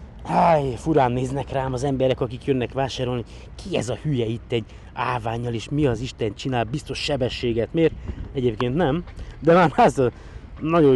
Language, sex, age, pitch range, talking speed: Hungarian, male, 20-39, 115-150 Hz, 170 wpm